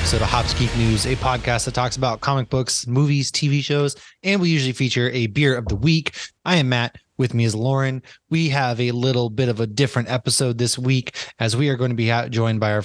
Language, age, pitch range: English, 20-39, 110-135 Hz